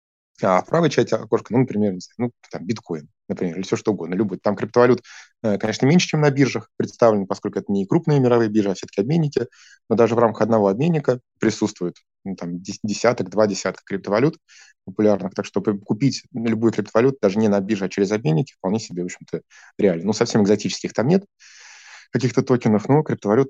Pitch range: 100-125 Hz